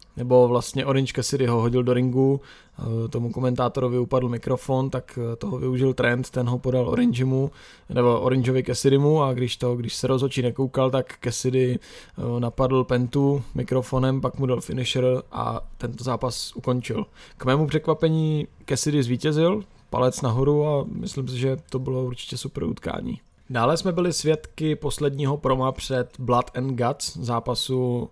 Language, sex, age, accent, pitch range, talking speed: Czech, male, 20-39, native, 120-135 Hz, 150 wpm